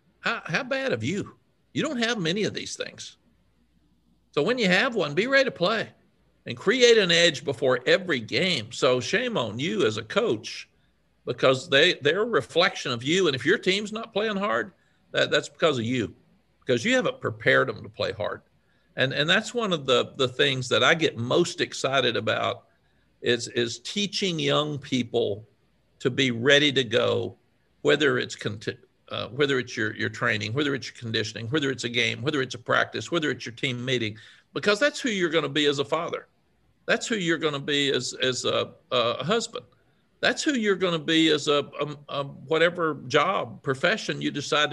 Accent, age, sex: American, 50-69, male